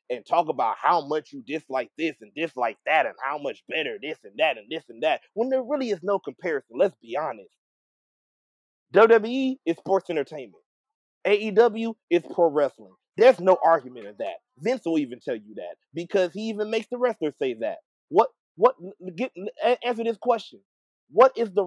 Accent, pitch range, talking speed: American, 185-275 Hz, 185 wpm